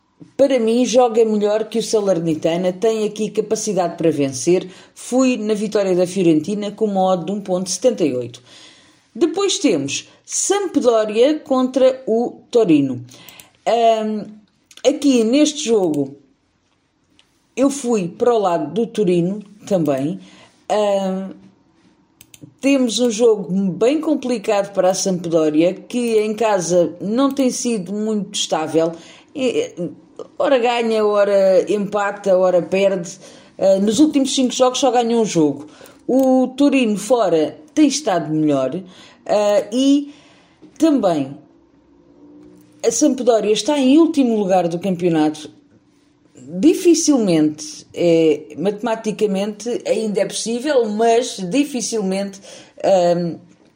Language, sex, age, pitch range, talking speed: Portuguese, female, 40-59, 180-250 Hz, 105 wpm